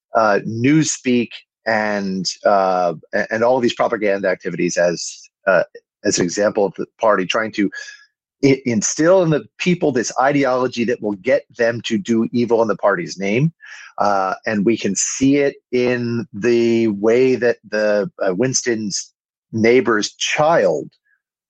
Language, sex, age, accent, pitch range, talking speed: English, male, 40-59, American, 110-150 Hz, 140 wpm